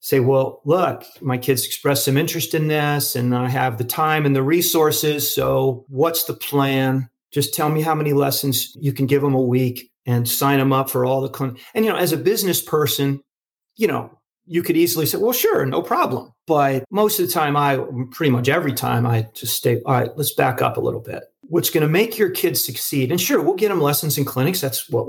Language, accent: English, American